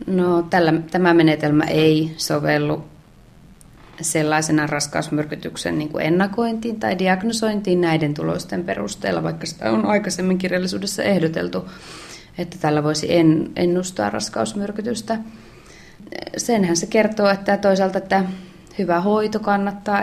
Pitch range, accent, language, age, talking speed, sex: 160-185 Hz, native, Finnish, 20-39, 110 wpm, female